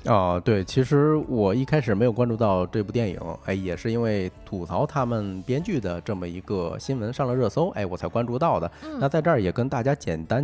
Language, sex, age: Chinese, male, 20-39